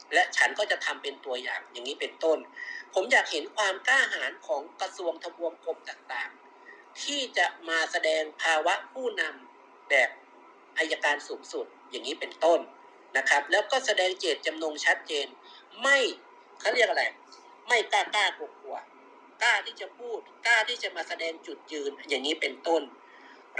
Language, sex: Thai, male